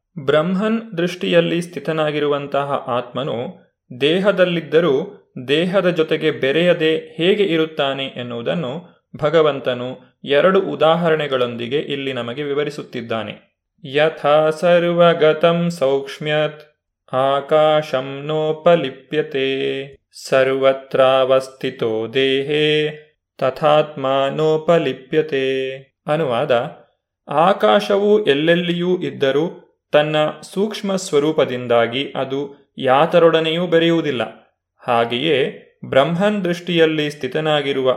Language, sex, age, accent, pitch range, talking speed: Kannada, male, 30-49, native, 135-160 Hz, 65 wpm